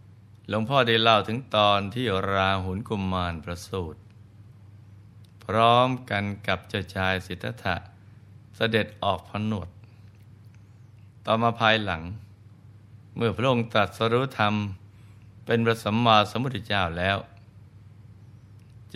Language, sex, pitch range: Thai, male, 100-110 Hz